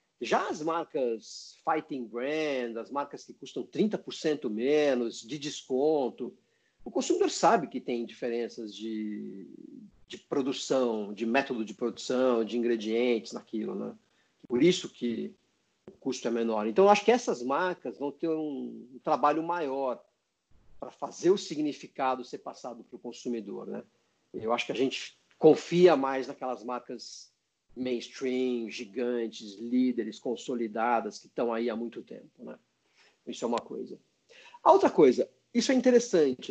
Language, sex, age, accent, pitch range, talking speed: Portuguese, male, 50-69, Brazilian, 120-190 Hz, 145 wpm